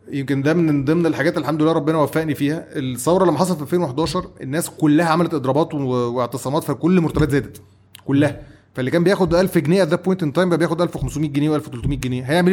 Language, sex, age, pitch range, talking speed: Arabic, male, 30-49, 130-170 Hz, 185 wpm